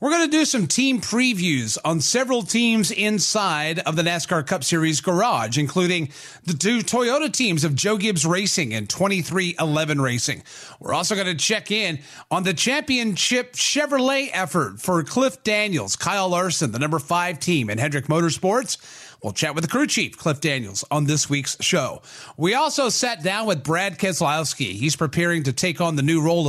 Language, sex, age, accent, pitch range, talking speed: English, male, 30-49, American, 155-215 Hz, 180 wpm